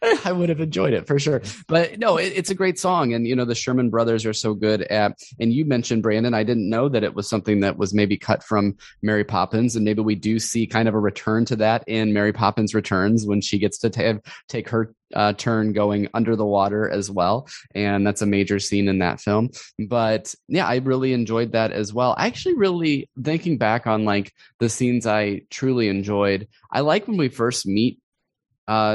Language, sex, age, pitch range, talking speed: English, male, 20-39, 100-120 Hz, 220 wpm